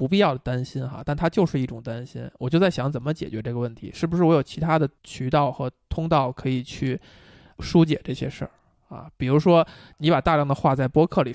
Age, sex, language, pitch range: 20-39, male, Chinese, 125-170 Hz